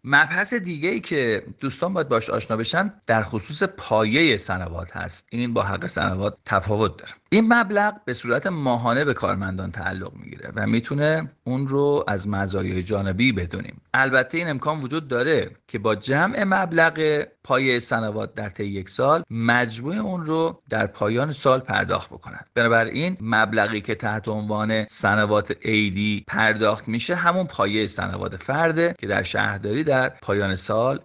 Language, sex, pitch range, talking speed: Persian, male, 105-135 Hz, 150 wpm